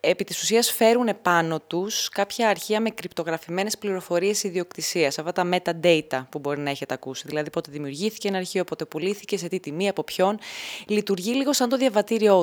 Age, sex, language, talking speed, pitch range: 20-39, female, Greek, 175 wpm, 165-210 Hz